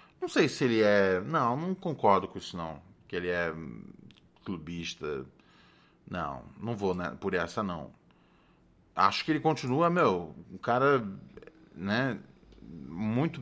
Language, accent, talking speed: Portuguese, Brazilian, 140 wpm